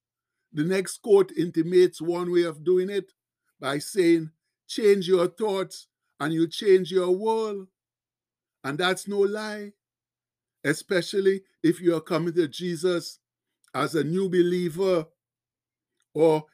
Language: English